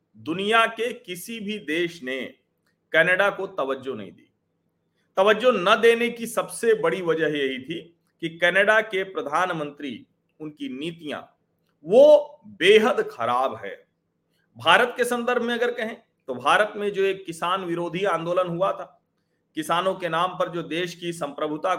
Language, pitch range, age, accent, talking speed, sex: Hindi, 165-230 Hz, 40-59, native, 145 wpm, male